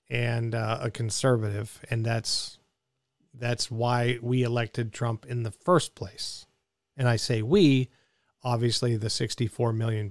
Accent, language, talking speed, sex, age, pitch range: American, English, 135 wpm, male, 40-59, 115-140 Hz